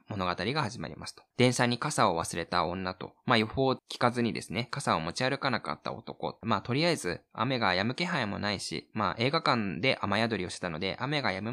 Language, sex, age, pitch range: Japanese, male, 20-39, 105-160 Hz